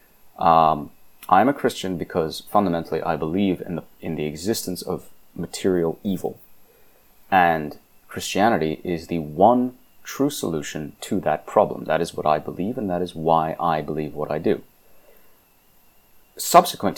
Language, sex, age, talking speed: English, male, 30-49, 145 wpm